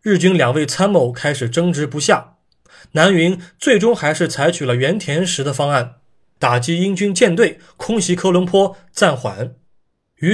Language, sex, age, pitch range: Chinese, male, 20-39, 130-180 Hz